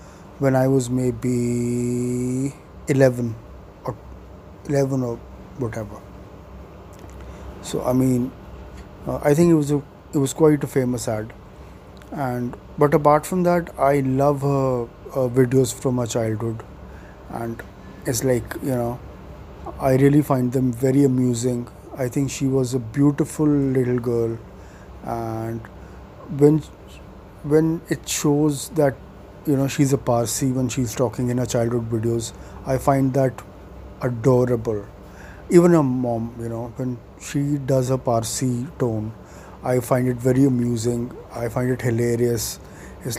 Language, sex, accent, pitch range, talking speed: English, male, Indian, 105-135 Hz, 140 wpm